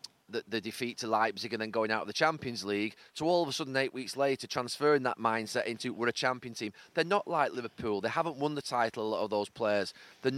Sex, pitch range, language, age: male, 120-150 Hz, English, 30-49